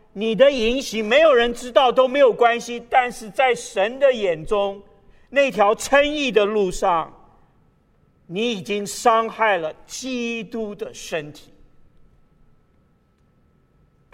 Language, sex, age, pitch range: Chinese, male, 50-69, 155-220 Hz